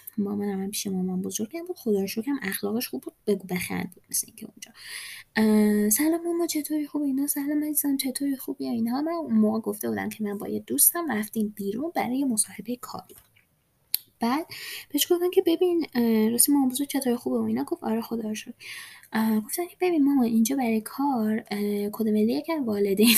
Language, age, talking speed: Persian, 10-29, 170 wpm